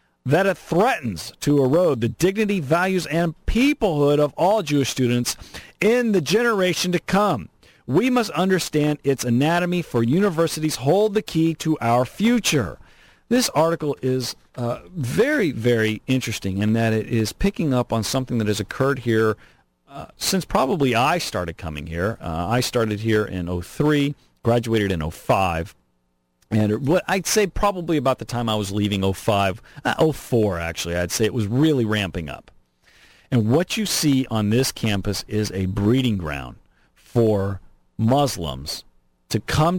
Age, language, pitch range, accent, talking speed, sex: 40-59, English, 95-150 Hz, American, 155 wpm, male